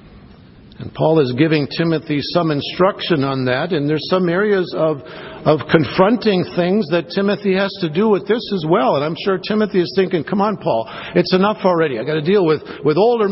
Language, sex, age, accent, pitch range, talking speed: English, male, 50-69, American, 165-210 Hz, 205 wpm